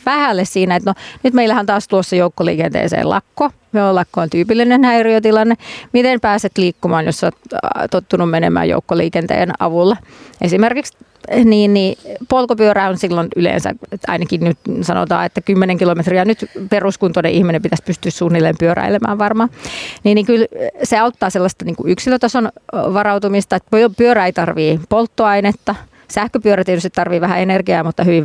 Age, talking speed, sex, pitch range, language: 30-49, 140 wpm, female, 175-215 Hz, Finnish